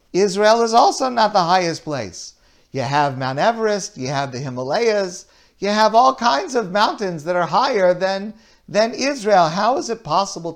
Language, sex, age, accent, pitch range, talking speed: English, male, 50-69, American, 135-210 Hz, 175 wpm